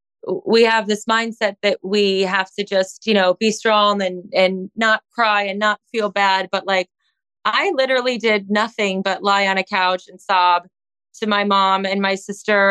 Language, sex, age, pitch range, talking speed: English, female, 20-39, 185-220 Hz, 190 wpm